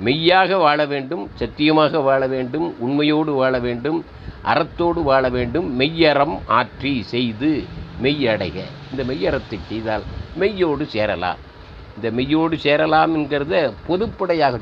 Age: 50-69